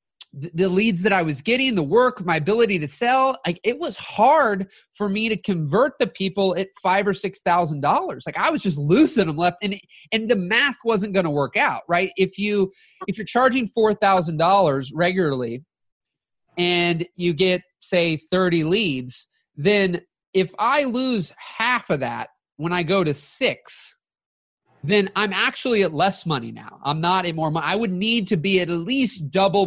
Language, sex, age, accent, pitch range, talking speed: English, male, 30-49, American, 170-220 Hz, 180 wpm